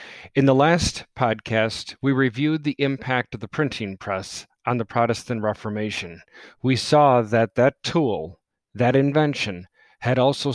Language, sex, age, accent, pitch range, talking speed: English, male, 50-69, American, 110-135 Hz, 140 wpm